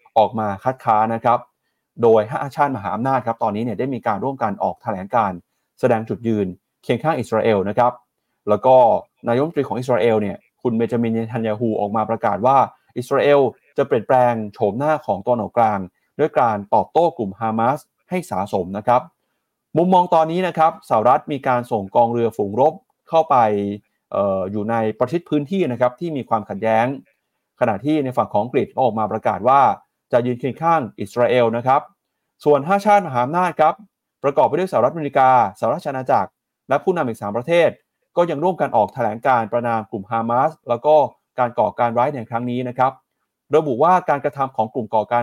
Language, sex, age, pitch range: Thai, male, 30-49, 115-150 Hz